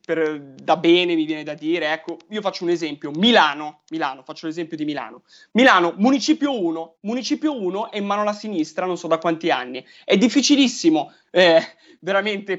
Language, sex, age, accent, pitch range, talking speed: Italian, male, 30-49, native, 165-245 Hz, 170 wpm